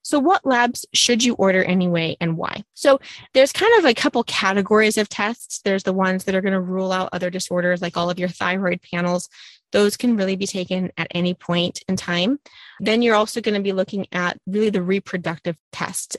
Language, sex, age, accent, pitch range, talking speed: English, female, 20-39, American, 185-230 Hz, 210 wpm